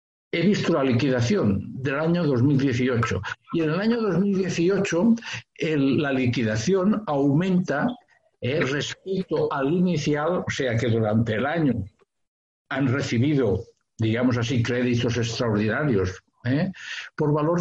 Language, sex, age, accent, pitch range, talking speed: Spanish, male, 60-79, Spanish, 115-165 Hz, 115 wpm